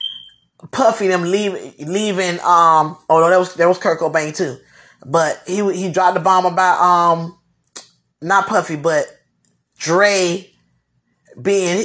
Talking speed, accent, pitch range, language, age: 135 wpm, American, 180-270 Hz, English, 20-39